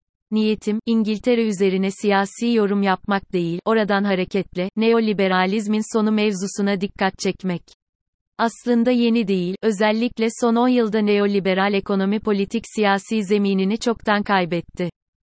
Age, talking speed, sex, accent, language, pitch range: 30-49, 110 wpm, female, native, Turkish, 185-215 Hz